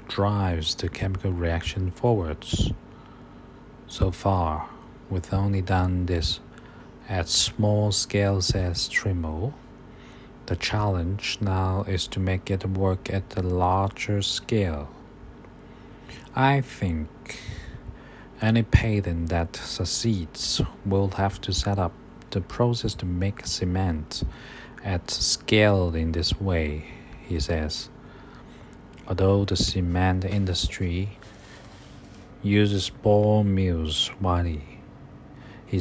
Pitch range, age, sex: 90-105 Hz, 50-69, male